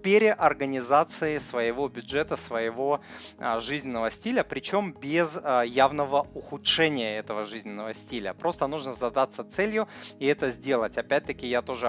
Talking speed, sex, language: 115 wpm, male, Russian